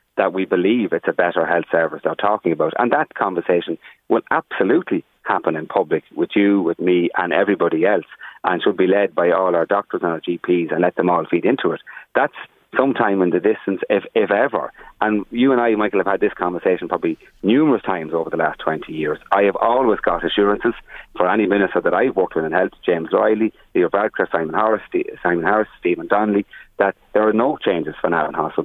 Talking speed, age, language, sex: 210 wpm, 30-49, English, male